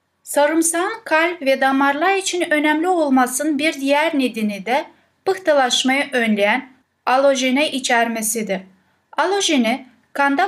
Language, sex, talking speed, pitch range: Turkish, female, 95 wpm, 245-300 Hz